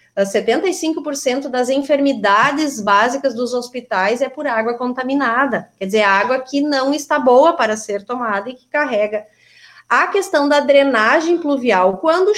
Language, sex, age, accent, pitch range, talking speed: Portuguese, female, 20-39, Brazilian, 235-295 Hz, 135 wpm